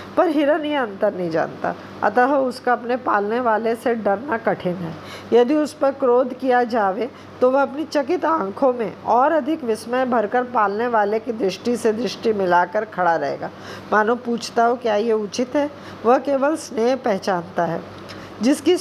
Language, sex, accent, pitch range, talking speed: Hindi, female, native, 220-270 Hz, 170 wpm